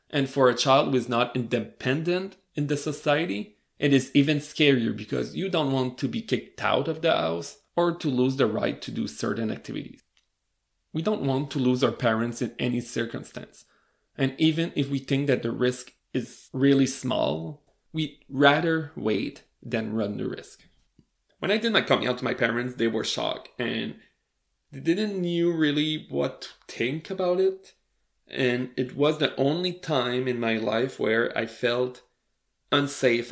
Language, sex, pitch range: English, male, 120-145 Hz